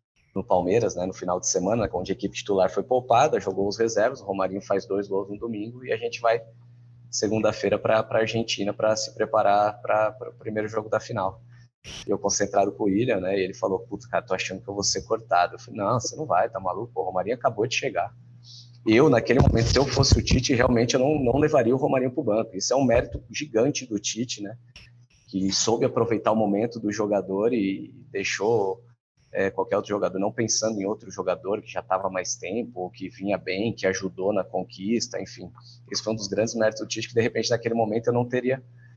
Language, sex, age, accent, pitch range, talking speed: Portuguese, male, 20-39, Brazilian, 100-120 Hz, 225 wpm